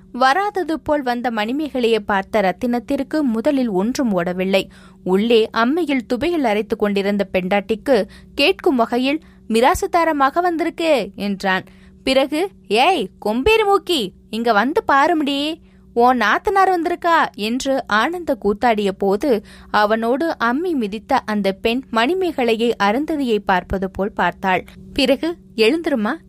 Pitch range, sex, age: 195-275 Hz, female, 20-39